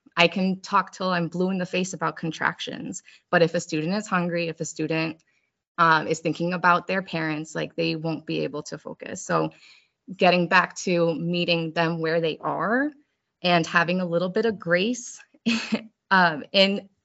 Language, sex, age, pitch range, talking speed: English, female, 20-39, 170-225 Hz, 180 wpm